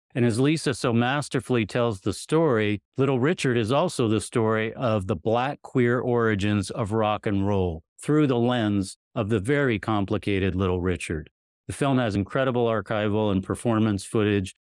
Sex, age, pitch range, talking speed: male, 40-59, 100-125 Hz, 165 wpm